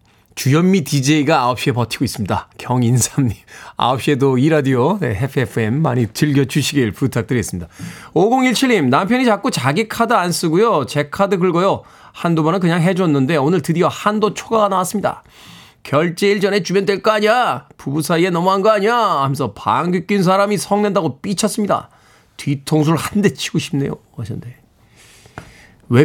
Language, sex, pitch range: Korean, male, 125-195 Hz